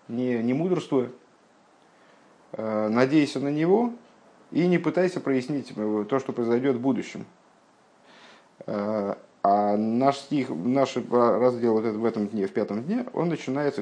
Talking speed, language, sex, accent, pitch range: 130 wpm, Russian, male, native, 105-150 Hz